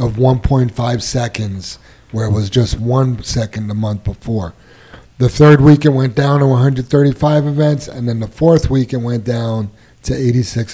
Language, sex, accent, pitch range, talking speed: English, male, American, 115-140 Hz, 175 wpm